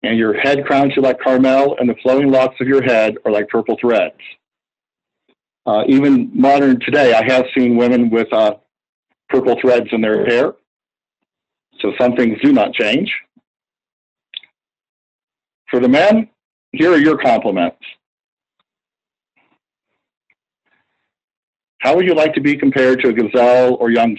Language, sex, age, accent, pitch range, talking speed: English, male, 50-69, American, 120-140 Hz, 145 wpm